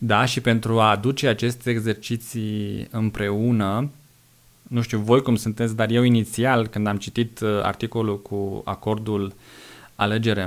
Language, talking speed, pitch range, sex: Romanian, 130 wpm, 105-120 Hz, male